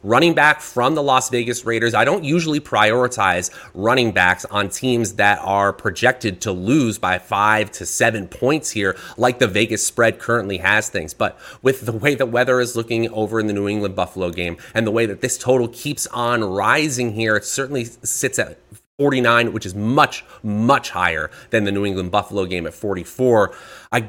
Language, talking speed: English, 190 wpm